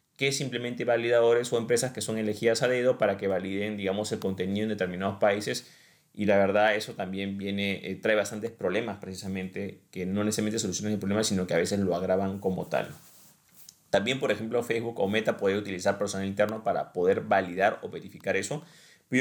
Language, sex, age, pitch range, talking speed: Spanish, male, 30-49, 100-120 Hz, 190 wpm